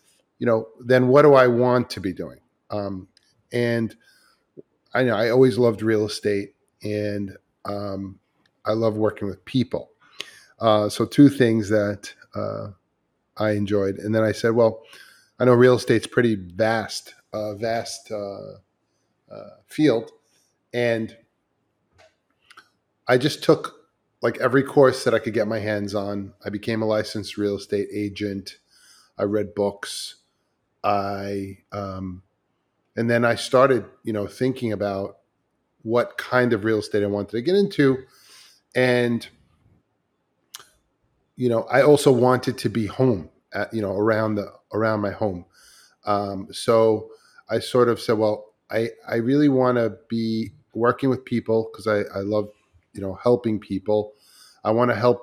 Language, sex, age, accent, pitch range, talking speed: English, male, 30-49, American, 105-120 Hz, 150 wpm